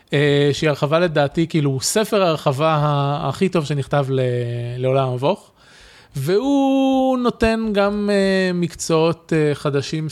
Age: 20-39